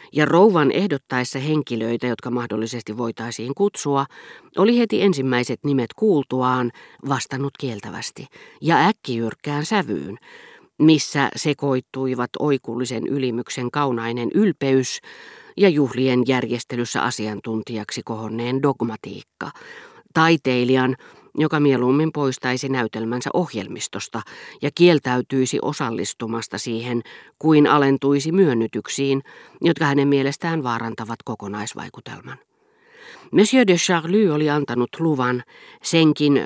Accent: native